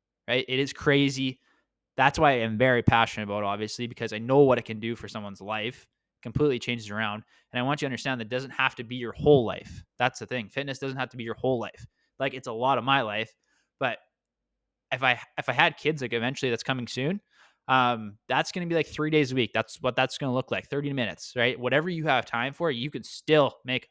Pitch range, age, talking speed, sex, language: 115-140 Hz, 20-39, 255 wpm, male, English